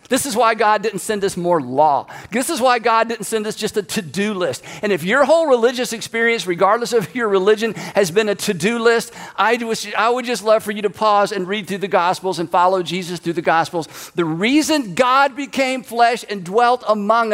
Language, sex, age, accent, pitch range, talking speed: English, male, 50-69, American, 165-230 Hz, 215 wpm